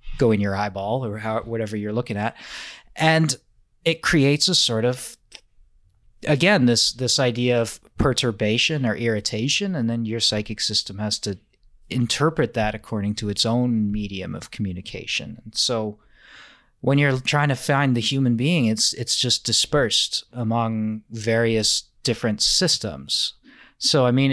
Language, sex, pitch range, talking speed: English, male, 110-135 Hz, 145 wpm